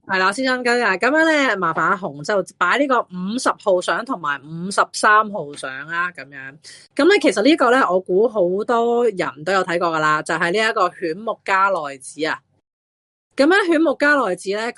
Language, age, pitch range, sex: Chinese, 30-49, 160-240 Hz, female